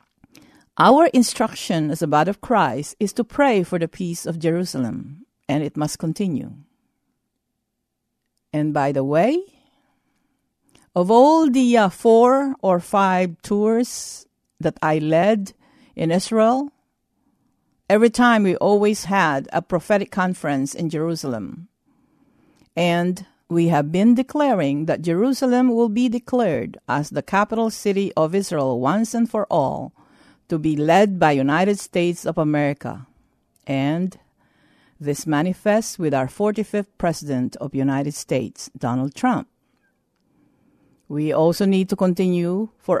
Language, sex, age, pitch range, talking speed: English, female, 50-69, 155-230 Hz, 130 wpm